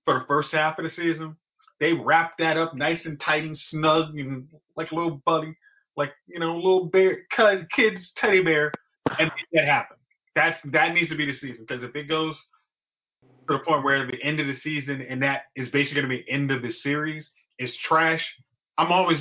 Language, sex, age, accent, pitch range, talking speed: English, male, 30-49, American, 125-155 Hz, 220 wpm